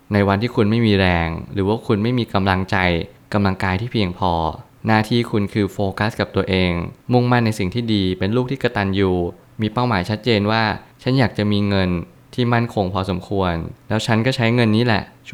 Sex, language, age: male, Thai, 20-39